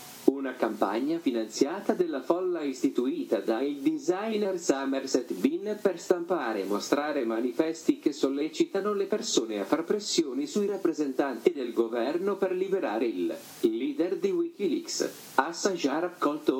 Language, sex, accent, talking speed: Italian, male, native, 125 wpm